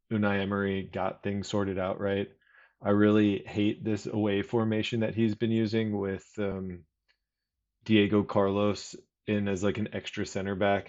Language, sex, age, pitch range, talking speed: English, male, 20-39, 95-110 Hz, 155 wpm